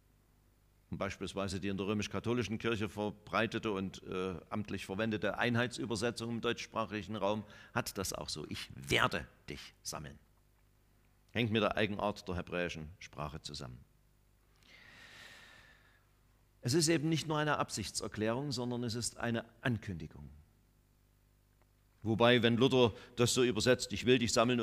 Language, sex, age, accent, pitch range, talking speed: German, male, 50-69, German, 105-125 Hz, 130 wpm